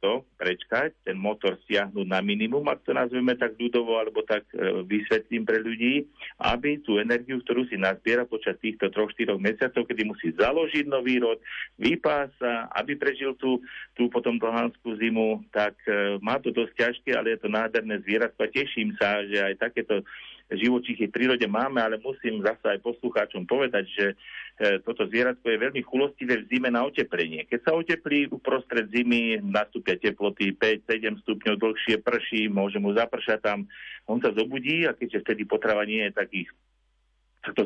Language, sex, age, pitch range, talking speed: Slovak, male, 50-69, 105-120 Hz, 165 wpm